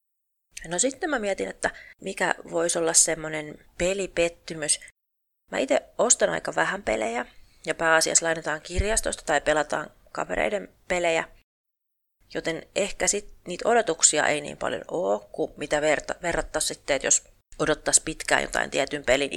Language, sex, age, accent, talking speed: Finnish, female, 30-49, native, 135 wpm